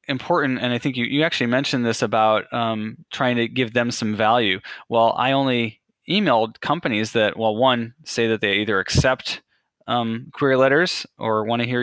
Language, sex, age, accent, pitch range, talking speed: English, male, 20-39, American, 110-125 Hz, 190 wpm